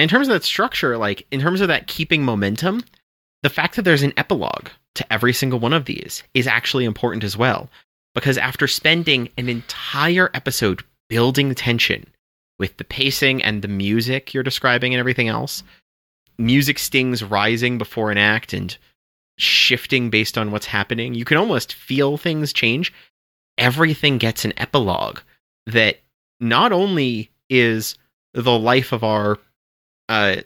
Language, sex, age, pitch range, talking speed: English, male, 30-49, 105-135 Hz, 155 wpm